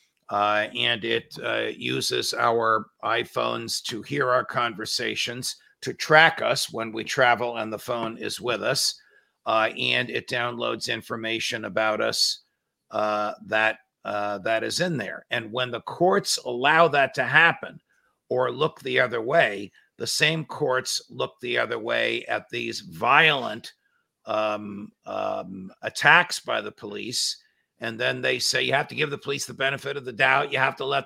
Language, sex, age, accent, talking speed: English, male, 50-69, American, 165 wpm